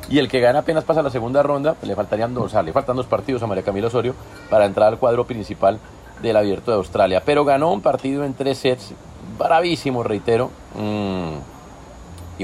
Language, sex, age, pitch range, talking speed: Spanish, male, 40-59, 100-140 Hz, 200 wpm